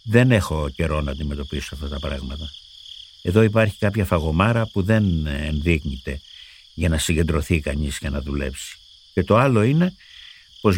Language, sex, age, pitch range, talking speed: Greek, male, 60-79, 75-105 Hz, 150 wpm